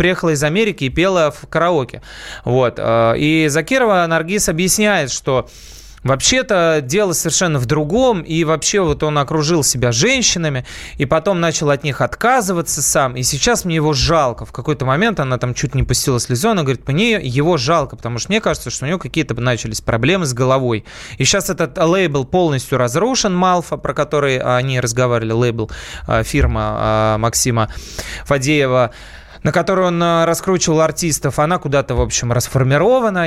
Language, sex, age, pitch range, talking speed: Russian, male, 20-39, 125-170 Hz, 160 wpm